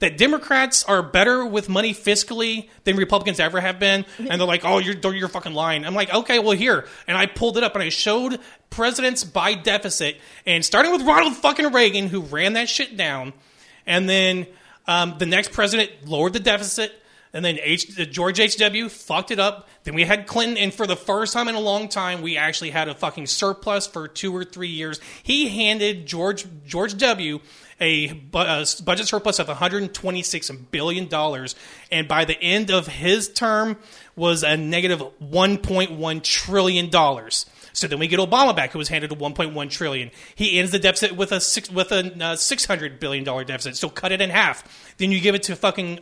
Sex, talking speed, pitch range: male, 190 wpm, 165-215 Hz